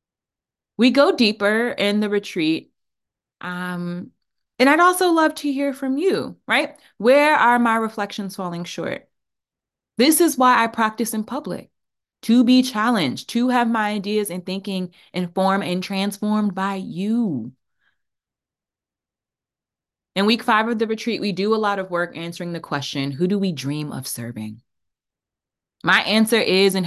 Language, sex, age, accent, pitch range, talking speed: English, female, 20-39, American, 165-235 Hz, 150 wpm